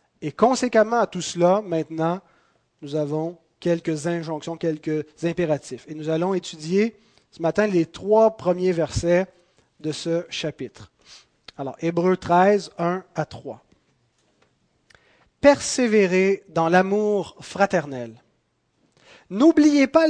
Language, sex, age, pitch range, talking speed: French, male, 30-49, 160-205 Hz, 110 wpm